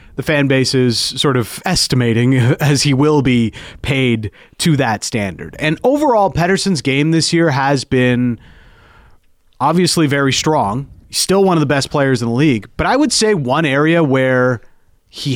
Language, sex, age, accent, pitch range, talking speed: English, male, 30-49, American, 115-145 Hz, 170 wpm